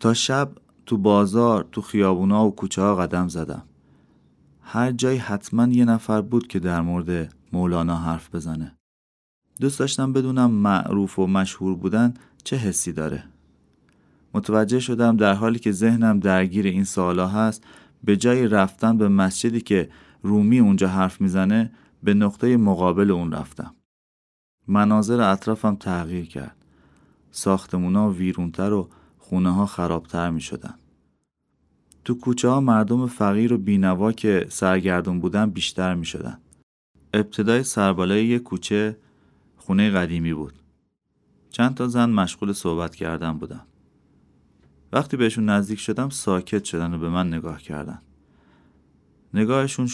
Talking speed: 130 wpm